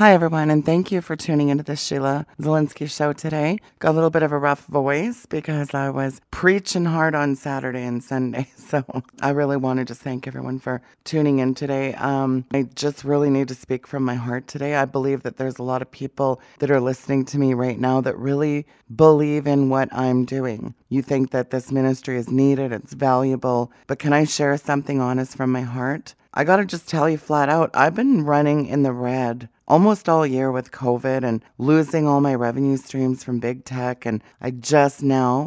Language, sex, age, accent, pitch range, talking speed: English, female, 30-49, American, 130-145 Hz, 210 wpm